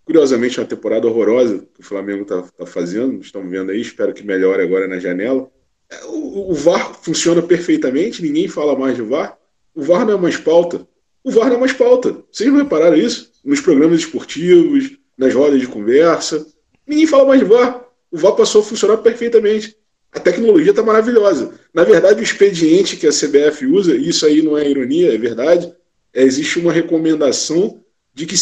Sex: male